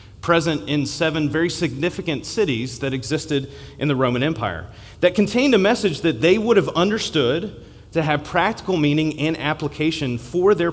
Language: English